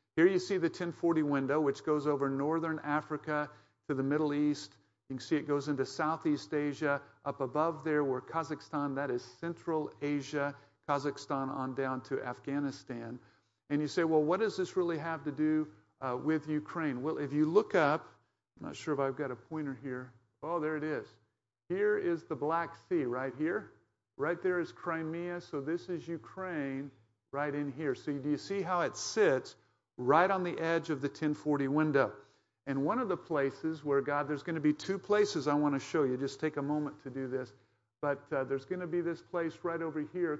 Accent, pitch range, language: American, 135-165 Hz, English